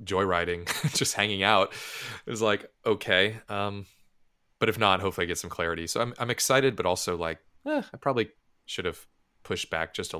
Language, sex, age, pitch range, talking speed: English, male, 20-39, 85-105 Hz, 195 wpm